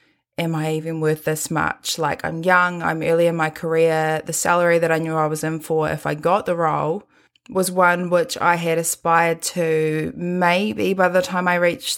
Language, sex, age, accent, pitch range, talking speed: English, female, 20-39, Australian, 160-185 Hz, 205 wpm